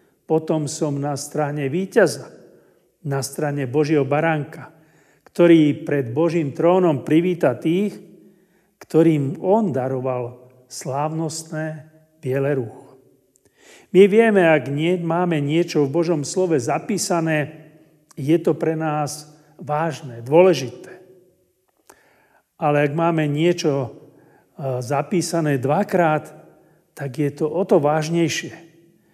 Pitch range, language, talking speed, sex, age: 145-175 Hz, Slovak, 100 wpm, male, 40-59